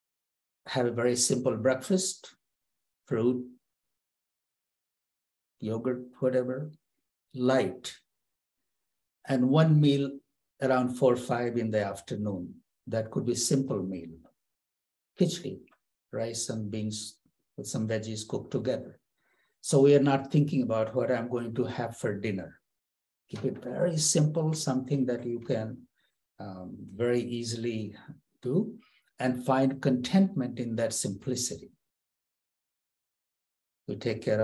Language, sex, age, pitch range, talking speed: English, male, 60-79, 110-140 Hz, 115 wpm